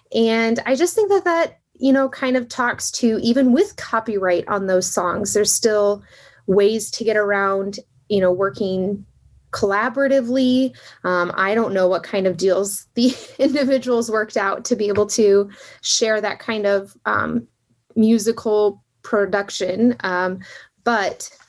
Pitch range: 195-245 Hz